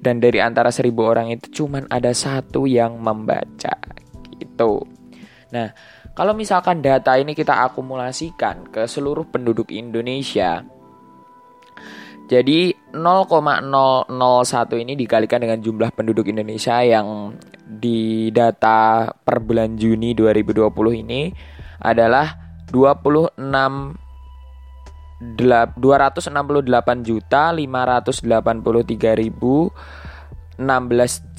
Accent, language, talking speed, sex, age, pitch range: native, Indonesian, 80 wpm, male, 20-39, 110-135 Hz